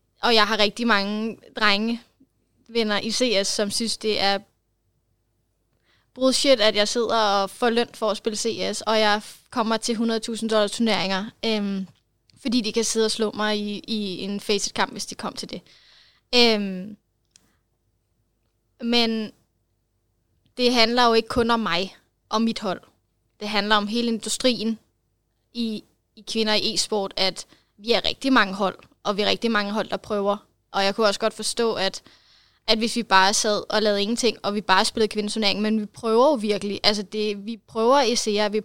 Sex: female